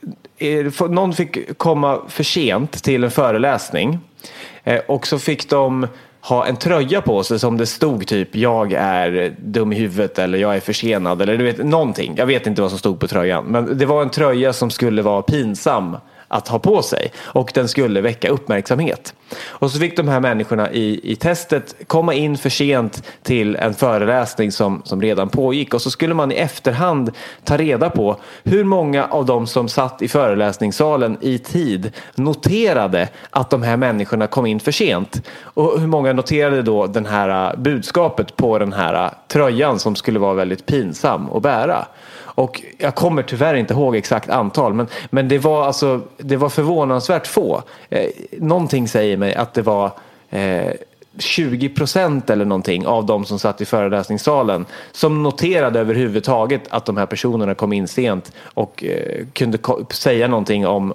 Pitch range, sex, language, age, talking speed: 105-145 Hz, male, English, 30-49, 175 wpm